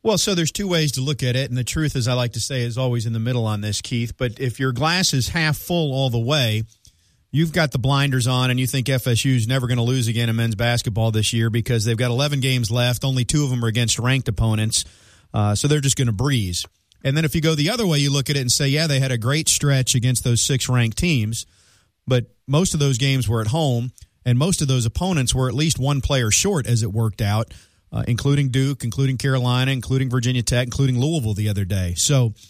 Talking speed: 255 wpm